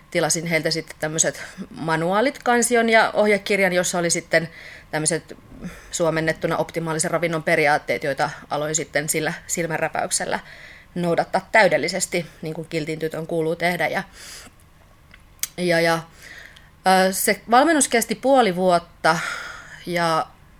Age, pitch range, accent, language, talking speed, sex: 30-49, 155-190 Hz, native, Finnish, 105 wpm, female